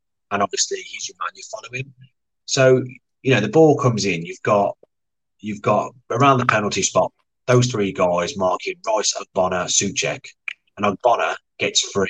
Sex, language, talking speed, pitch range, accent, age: male, English, 170 wpm, 100-135 Hz, British, 30-49